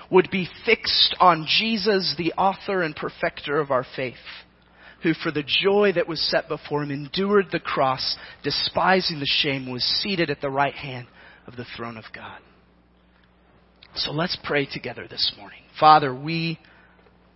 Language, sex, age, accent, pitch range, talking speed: English, male, 30-49, American, 130-170 Hz, 160 wpm